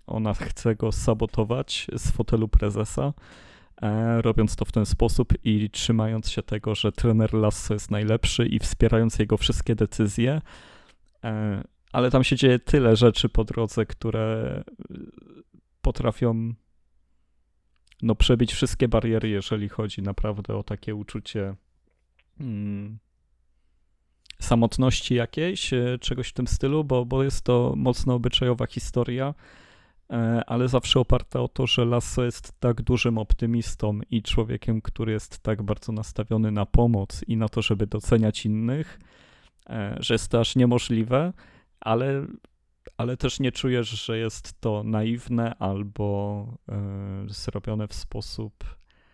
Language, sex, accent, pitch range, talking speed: Polish, male, native, 100-120 Hz, 130 wpm